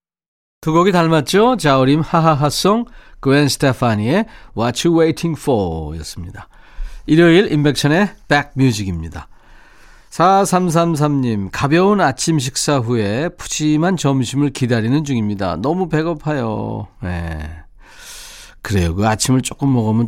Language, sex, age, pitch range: Korean, male, 40-59, 110-155 Hz